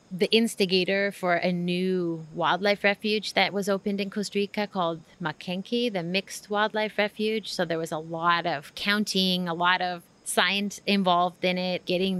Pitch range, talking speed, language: 175-205 Hz, 165 wpm, English